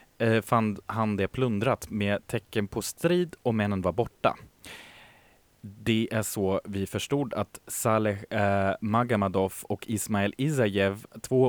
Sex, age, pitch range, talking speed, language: male, 20-39, 100-125 Hz, 125 wpm, Swedish